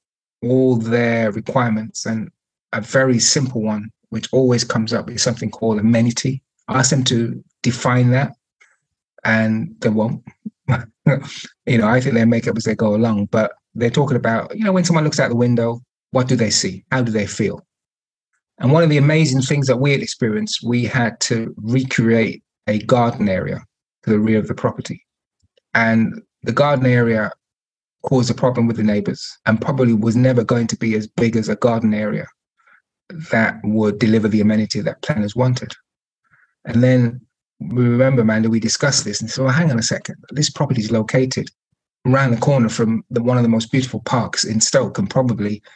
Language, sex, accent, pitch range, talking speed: English, male, British, 115-130 Hz, 185 wpm